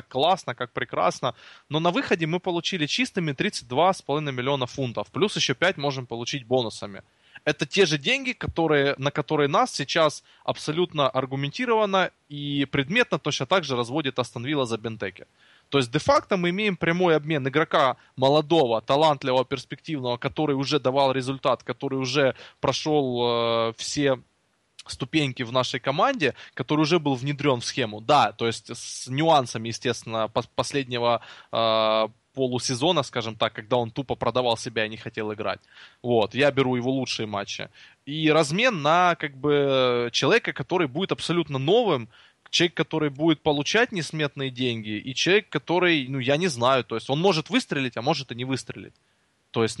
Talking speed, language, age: 160 wpm, Russian, 20-39